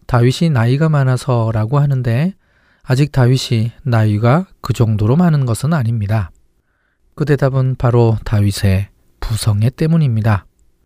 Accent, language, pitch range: native, Korean, 110-140 Hz